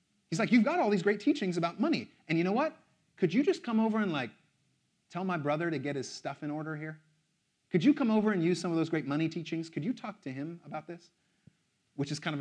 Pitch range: 140-185 Hz